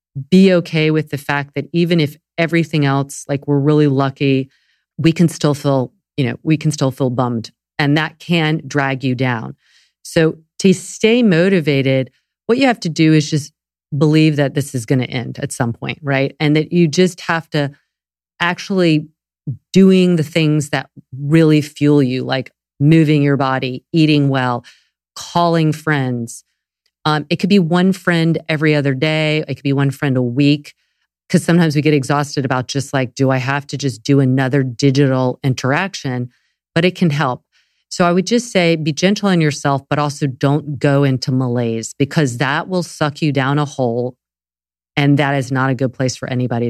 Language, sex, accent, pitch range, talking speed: English, female, American, 135-160 Hz, 185 wpm